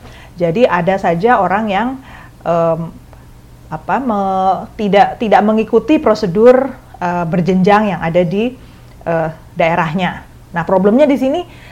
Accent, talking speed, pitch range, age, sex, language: Indonesian, 120 wpm, 175-230 Hz, 30-49, female, English